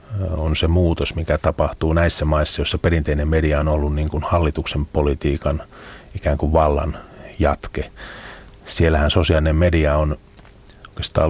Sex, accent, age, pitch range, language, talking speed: male, native, 30-49, 75-90 Hz, Finnish, 135 wpm